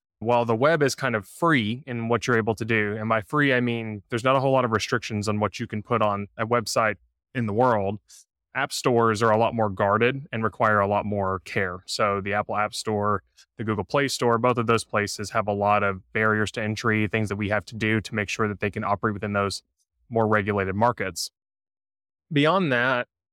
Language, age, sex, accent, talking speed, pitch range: English, 20-39, male, American, 230 wpm, 105-120 Hz